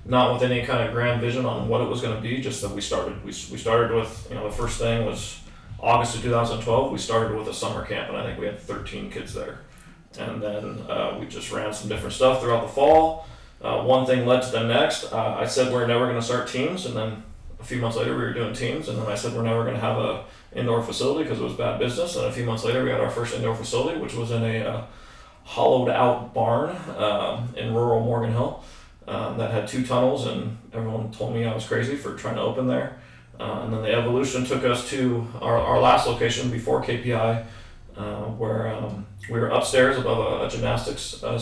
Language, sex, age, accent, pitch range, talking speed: English, male, 20-39, American, 105-125 Hz, 240 wpm